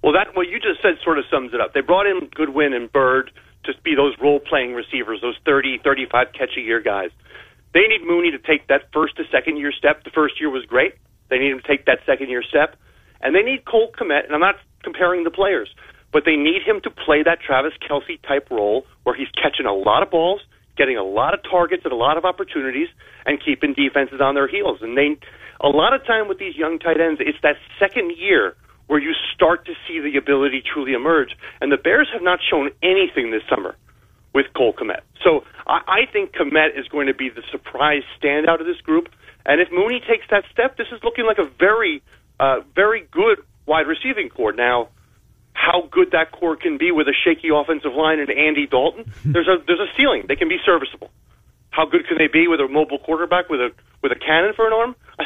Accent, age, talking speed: American, 40-59, 220 wpm